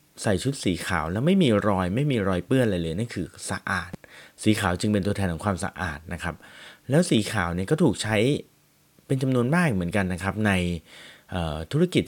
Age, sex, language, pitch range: 30-49, male, Thai, 90-120 Hz